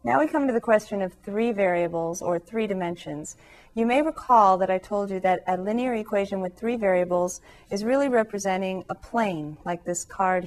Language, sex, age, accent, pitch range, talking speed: English, female, 40-59, American, 180-225 Hz, 195 wpm